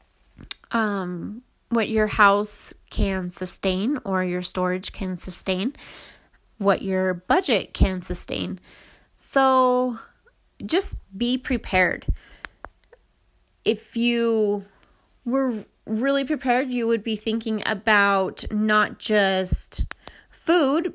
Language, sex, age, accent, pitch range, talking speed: English, female, 20-39, American, 185-225 Hz, 95 wpm